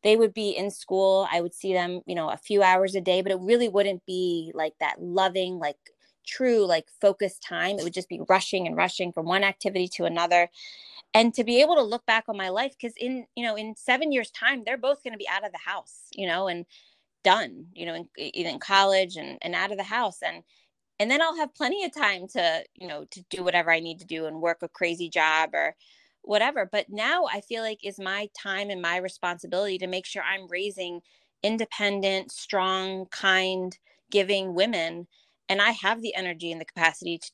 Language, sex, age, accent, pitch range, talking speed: English, female, 20-39, American, 175-215 Hz, 220 wpm